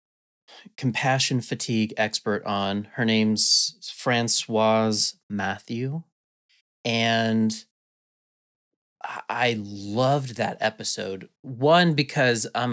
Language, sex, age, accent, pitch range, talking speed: English, male, 30-49, American, 110-135 Hz, 75 wpm